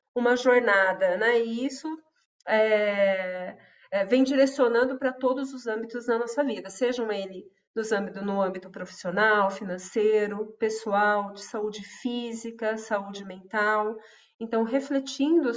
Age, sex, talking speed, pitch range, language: 40-59, female, 125 wpm, 200-245 Hz, Portuguese